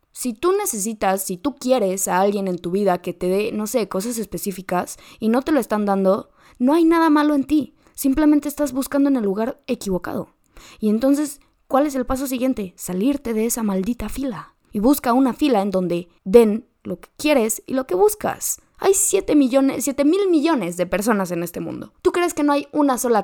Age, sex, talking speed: 20-39, female, 210 wpm